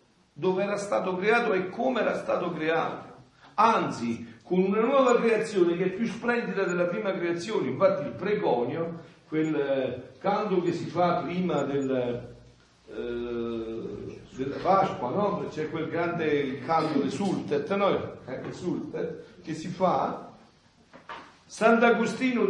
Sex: male